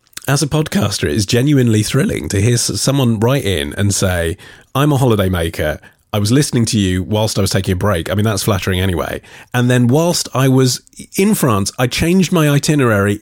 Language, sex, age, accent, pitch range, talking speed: English, male, 30-49, British, 95-135 Hz, 205 wpm